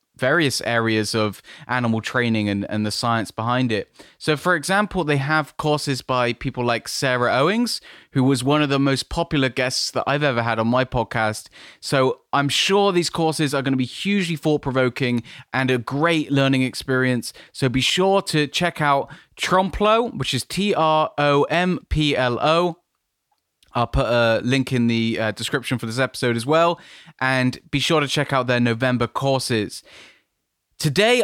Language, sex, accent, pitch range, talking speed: English, male, British, 130-170 Hz, 175 wpm